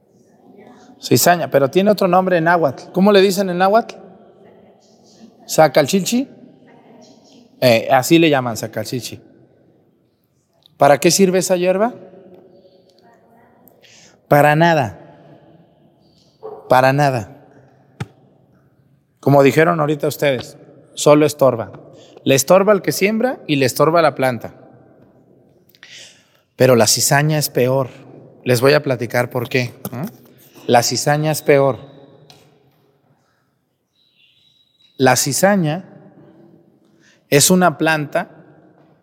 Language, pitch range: Spanish, 135-180 Hz